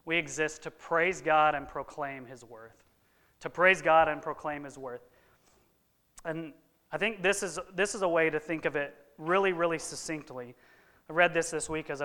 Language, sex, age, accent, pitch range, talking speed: English, male, 30-49, American, 140-170 Hz, 190 wpm